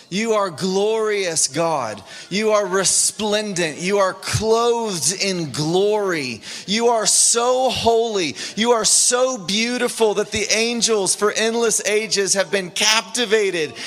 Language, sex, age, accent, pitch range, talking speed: English, male, 30-49, American, 160-215 Hz, 125 wpm